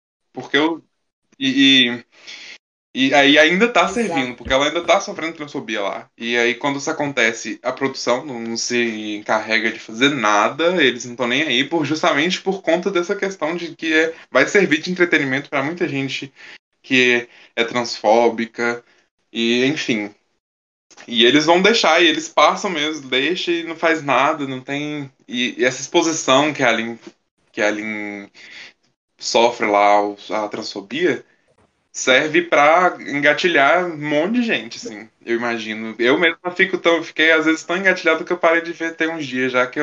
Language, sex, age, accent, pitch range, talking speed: Portuguese, male, 10-29, Brazilian, 120-165 Hz, 170 wpm